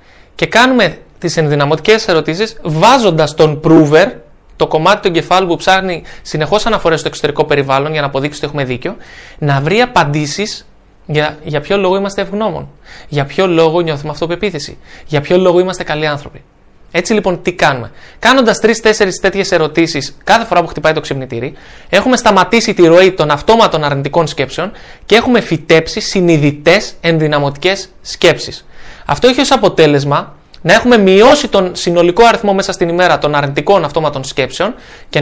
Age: 20-39